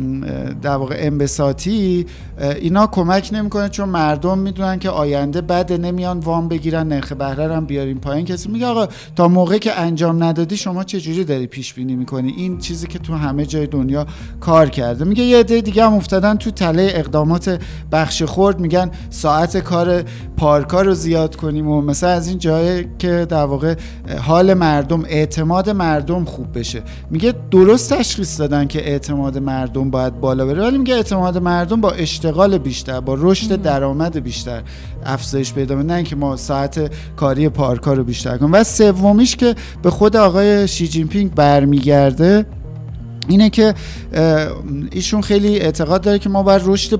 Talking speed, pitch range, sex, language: 160 wpm, 140-190 Hz, male, Persian